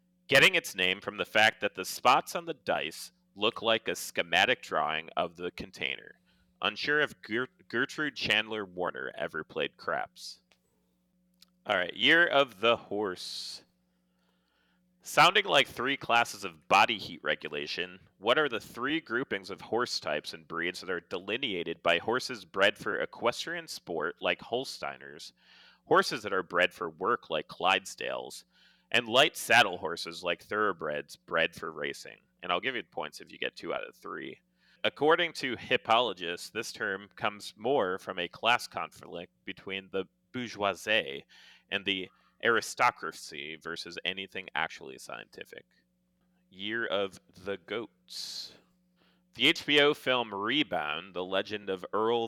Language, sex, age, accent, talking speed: English, male, 30-49, American, 140 wpm